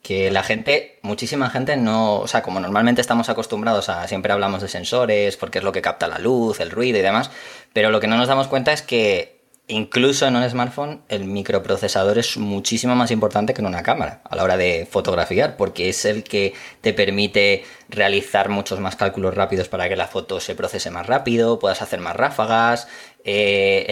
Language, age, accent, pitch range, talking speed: Spanish, 20-39, Spanish, 100-125 Hz, 200 wpm